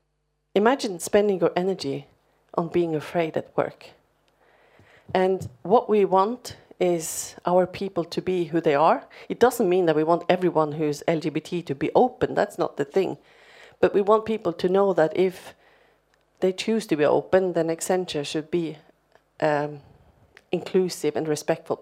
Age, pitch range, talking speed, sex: 40-59, 155-195 Hz, 160 wpm, female